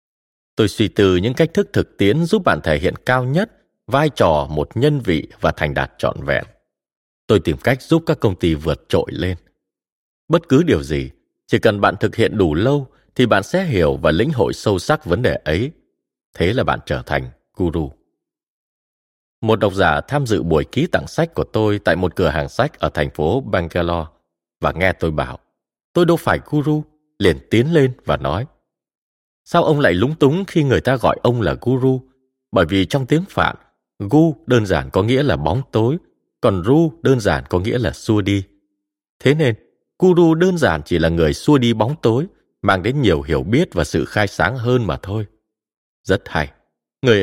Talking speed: 200 wpm